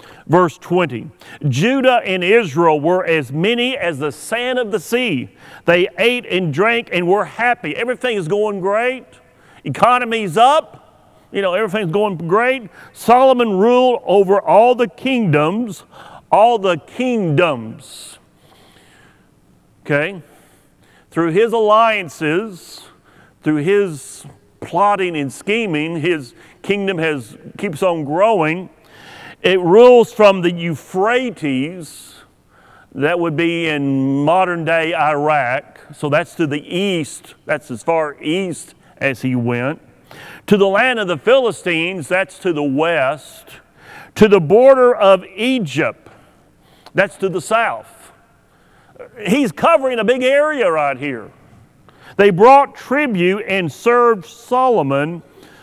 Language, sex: English, male